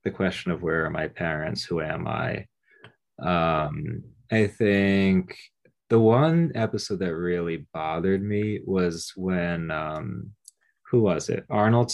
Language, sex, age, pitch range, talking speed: English, male, 20-39, 85-110 Hz, 135 wpm